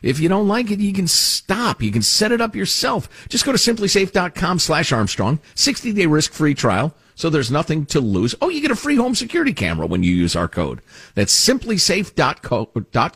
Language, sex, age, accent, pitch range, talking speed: English, male, 50-69, American, 105-175 Hz, 220 wpm